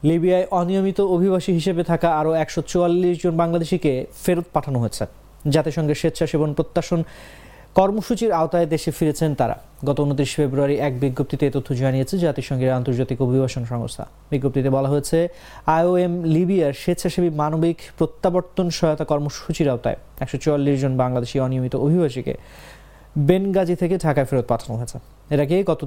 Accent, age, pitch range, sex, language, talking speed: Indian, 30-49, 140-170 Hz, male, English, 110 wpm